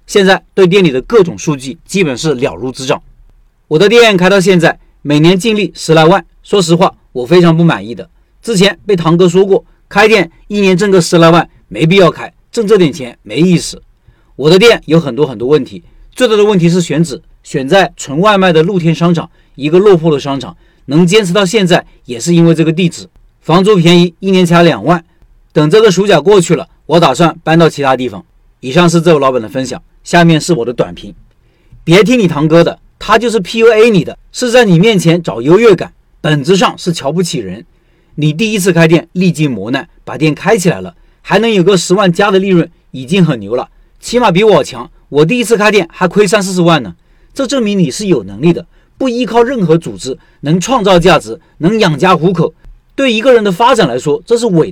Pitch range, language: 155-195 Hz, Chinese